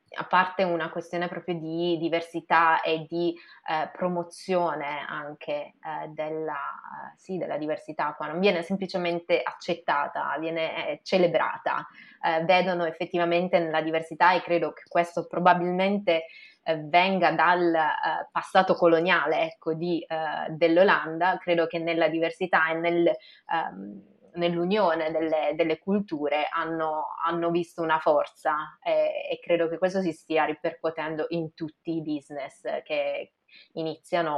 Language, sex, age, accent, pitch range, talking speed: Italian, female, 20-39, native, 160-185 Hz, 120 wpm